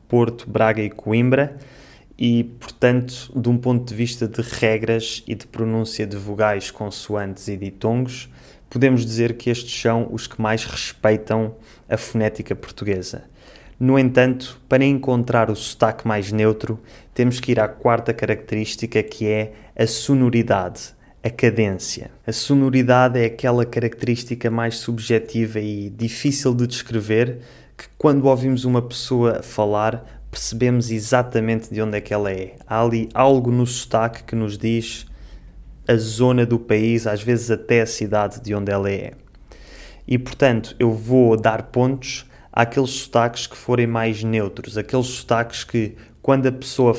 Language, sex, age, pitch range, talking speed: Portuguese, male, 20-39, 110-125 Hz, 150 wpm